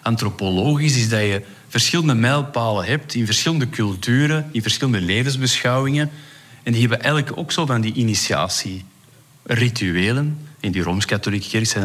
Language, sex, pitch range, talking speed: Dutch, male, 95-120 Hz, 135 wpm